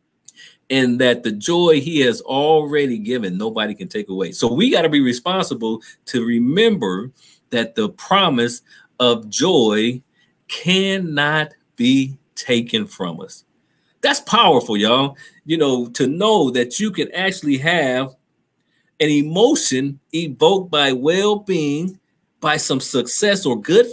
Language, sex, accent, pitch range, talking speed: English, male, American, 135-200 Hz, 130 wpm